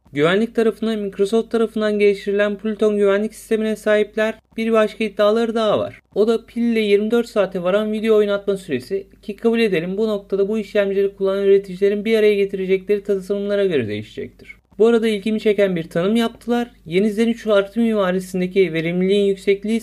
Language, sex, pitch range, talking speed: Turkish, male, 200-225 Hz, 155 wpm